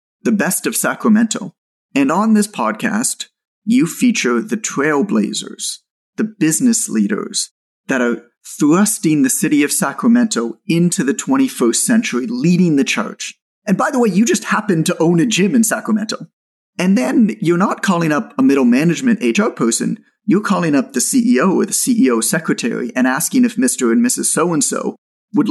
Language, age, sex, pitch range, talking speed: English, 30-49, male, 170-245 Hz, 165 wpm